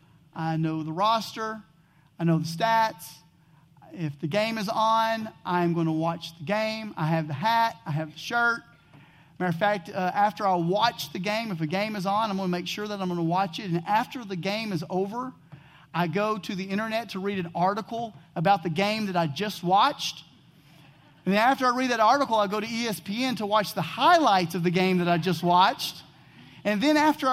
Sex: male